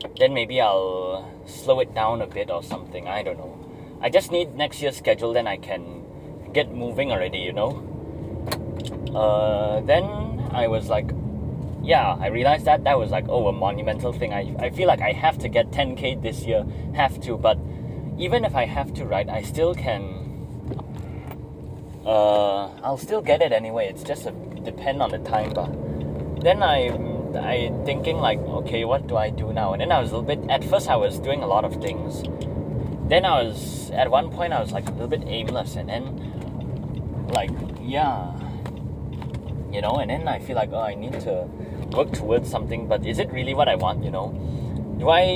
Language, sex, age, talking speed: English, male, 20-39, 195 wpm